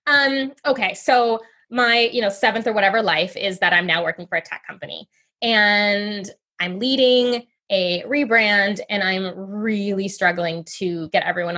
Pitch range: 175-240 Hz